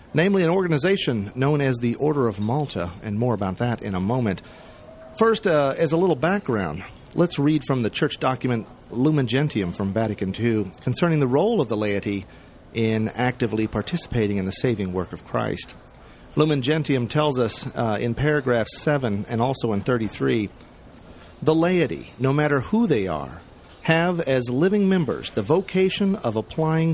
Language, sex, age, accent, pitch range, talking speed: English, male, 40-59, American, 115-165 Hz, 165 wpm